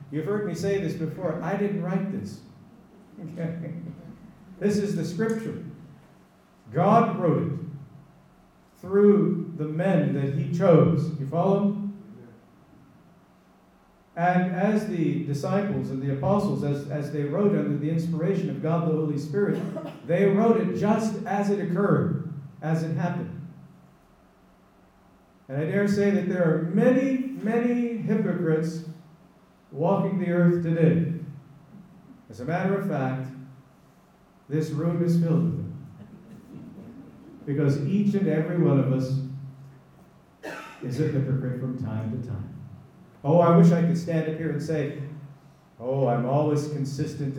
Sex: male